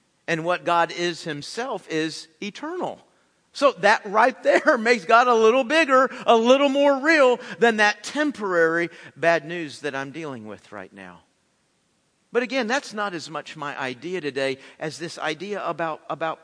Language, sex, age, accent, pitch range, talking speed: English, male, 50-69, American, 155-210 Hz, 165 wpm